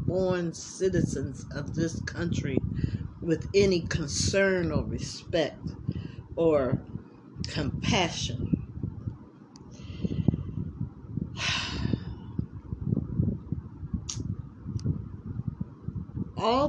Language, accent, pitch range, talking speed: English, American, 140-205 Hz, 45 wpm